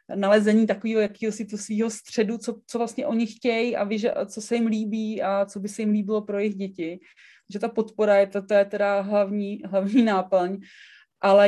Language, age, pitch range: Czech, 30-49, 180-210 Hz